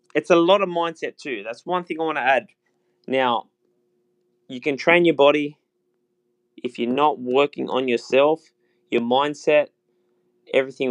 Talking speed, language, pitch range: 155 wpm, English, 120-150 Hz